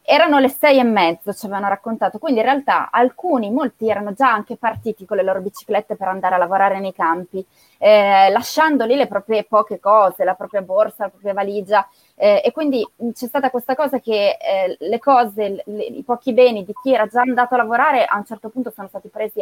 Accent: native